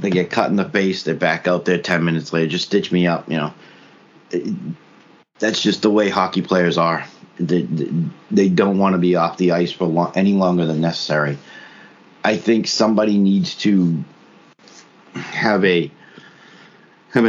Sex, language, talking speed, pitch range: male, English, 175 wpm, 85-95 Hz